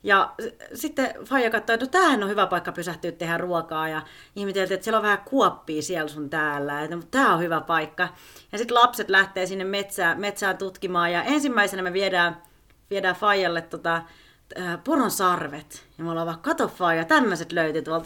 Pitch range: 165-225 Hz